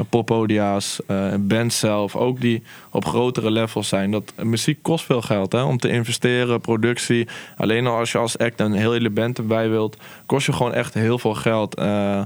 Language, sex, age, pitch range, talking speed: Dutch, male, 20-39, 110-125 Hz, 195 wpm